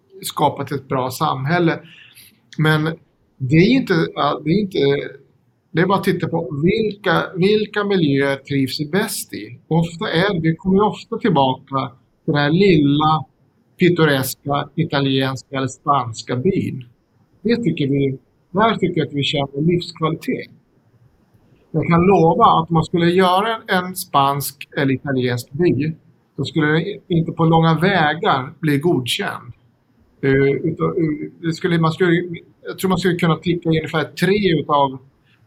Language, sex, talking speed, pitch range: Swedish, male, 135 wpm, 140-180 Hz